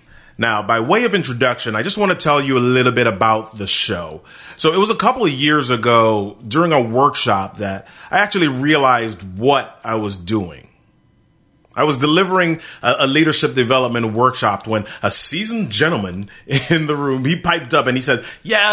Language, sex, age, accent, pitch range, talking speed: English, male, 30-49, American, 110-160 Hz, 185 wpm